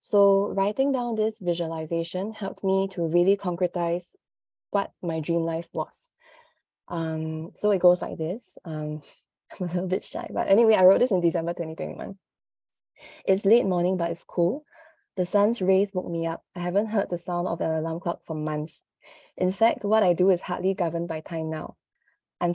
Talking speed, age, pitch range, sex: 185 wpm, 20-39, 170-195 Hz, female